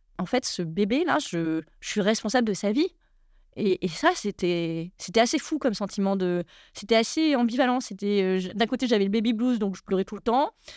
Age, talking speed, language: 30-49, 215 wpm, French